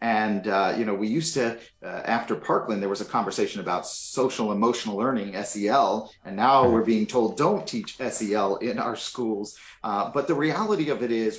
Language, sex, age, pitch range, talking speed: English, male, 40-59, 110-145 Hz, 195 wpm